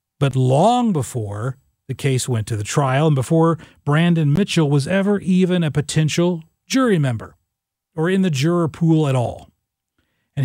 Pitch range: 130-175 Hz